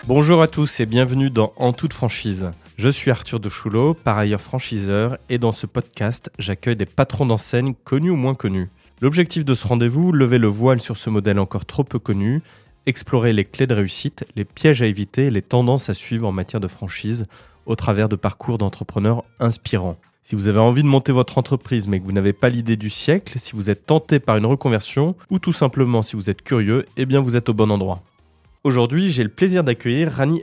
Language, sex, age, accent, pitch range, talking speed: French, male, 20-39, French, 105-135 Hz, 215 wpm